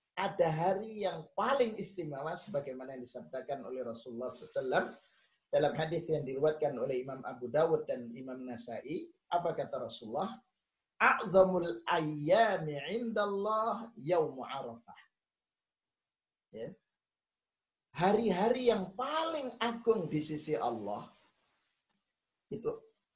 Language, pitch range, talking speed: Indonesian, 130-190 Hz, 95 wpm